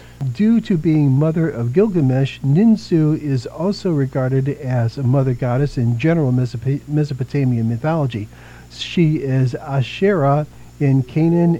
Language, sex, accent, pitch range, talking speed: English, male, American, 130-155 Hz, 120 wpm